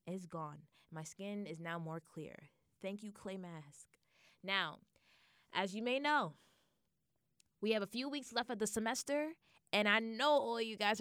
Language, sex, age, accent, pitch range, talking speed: English, female, 20-39, American, 180-245 Hz, 175 wpm